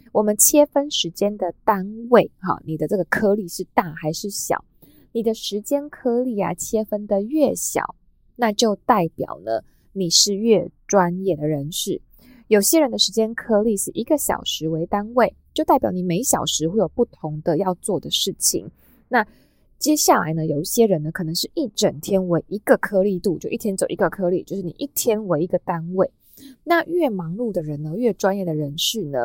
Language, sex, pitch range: Chinese, female, 170-235 Hz